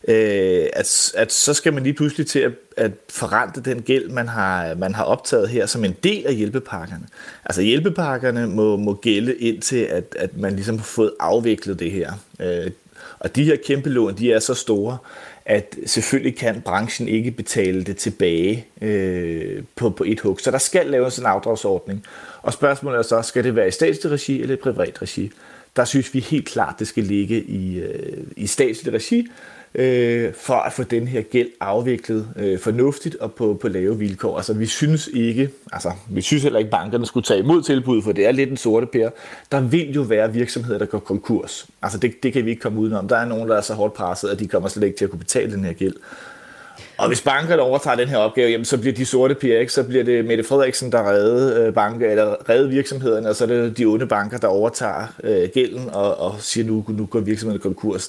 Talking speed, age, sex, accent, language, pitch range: 215 wpm, 30-49, male, native, Danish, 105-135 Hz